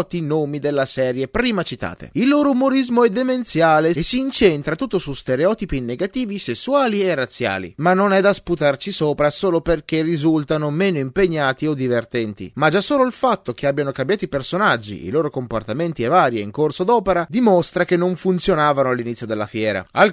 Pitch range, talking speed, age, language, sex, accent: 135-200 Hz, 180 wpm, 30-49, Italian, male, native